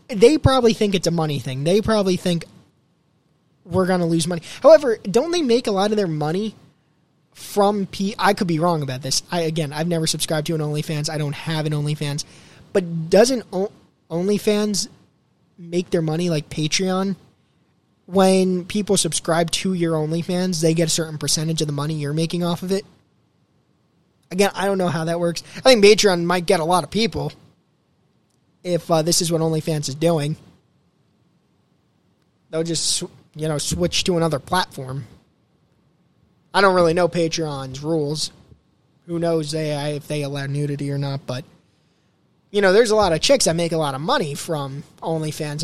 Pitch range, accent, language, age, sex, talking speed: 155-190 Hz, American, English, 20-39, male, 180 wpm